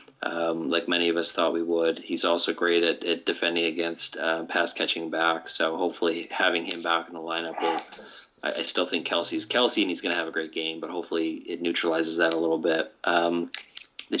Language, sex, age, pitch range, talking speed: English, male, 30-49, 85-90 Hz, 210 wpm